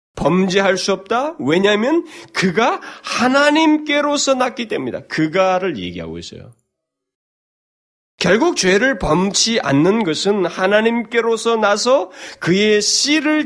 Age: 30-49